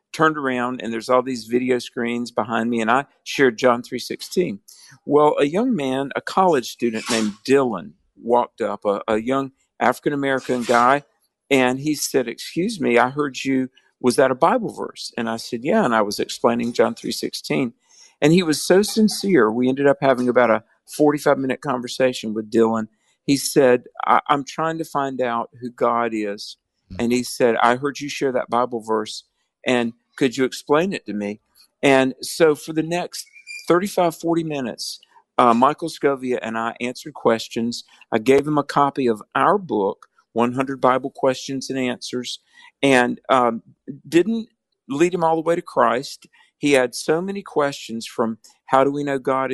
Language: English